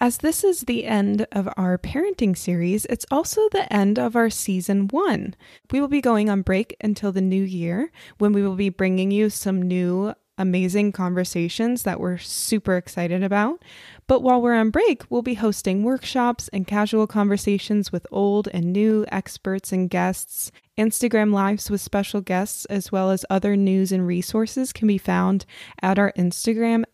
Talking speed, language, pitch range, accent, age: 175 wpm, English, 190-230 Hz, American, 20-39